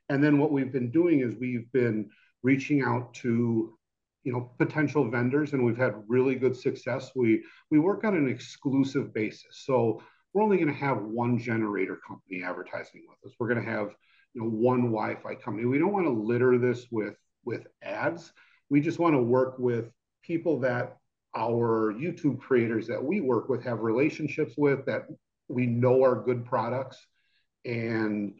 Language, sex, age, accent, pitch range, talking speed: English, male, 50-69, American, 115-140 Hz, 175 wpm